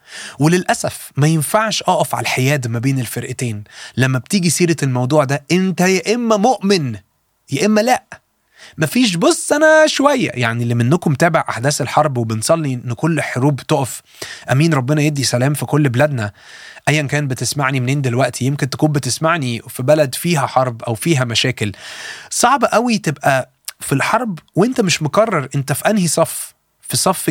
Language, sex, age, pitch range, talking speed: Arabic, male, 30-49, 130-175 Hz, 160 wpm